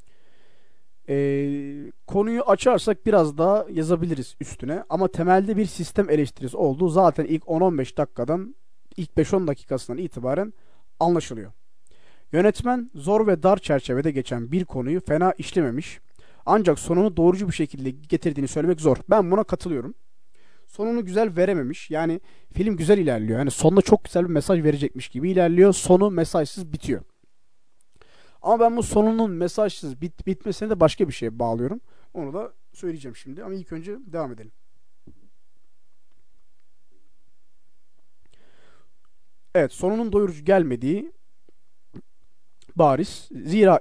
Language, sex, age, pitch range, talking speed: Turkish, male, 40-59, 145-190 Hz, 120 wpm